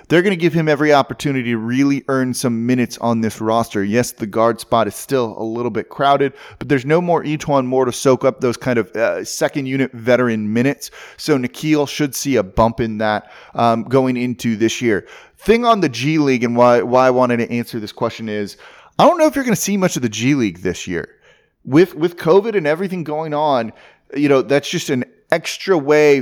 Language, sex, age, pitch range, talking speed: English, male, 30-49, 115-145 Hz, 225 wpm